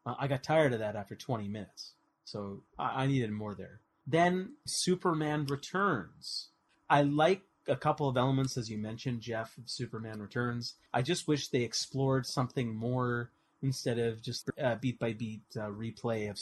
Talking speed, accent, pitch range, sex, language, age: 160 wpm, American, 115-140 Hz, male, English, 30-49